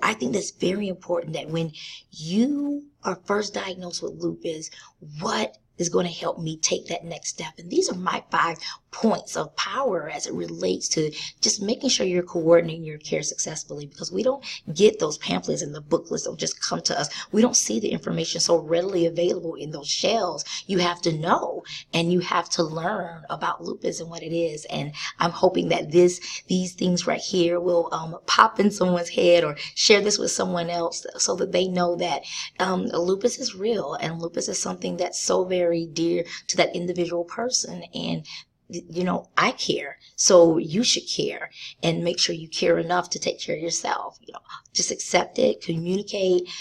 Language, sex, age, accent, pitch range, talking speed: English, female, 20-39, American, 165-185 Hz, 195 wpm